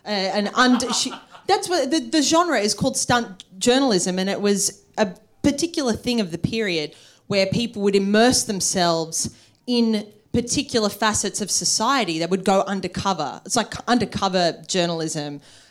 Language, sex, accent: English, female, Australian